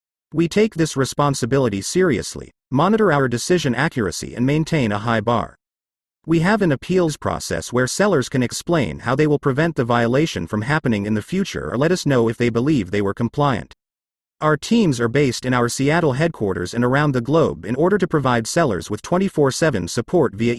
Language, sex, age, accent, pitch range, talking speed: English, male, 40-59, American, 115-155 Hz, 190 wpm